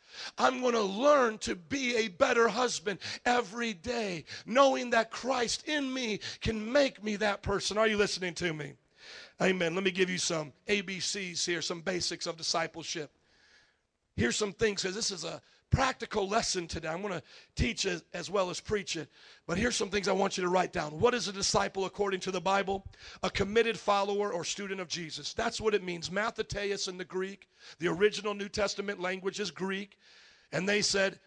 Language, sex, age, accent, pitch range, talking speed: English, male, 40-59, American, 190-230 Hz, 195 wpm